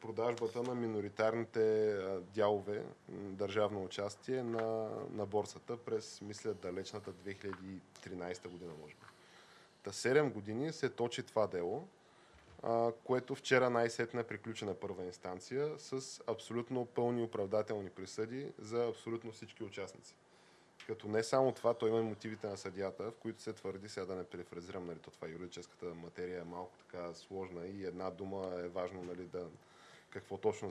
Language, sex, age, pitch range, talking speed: Bulgarian, male, 20-39, 95-115 Hz, 145 wpm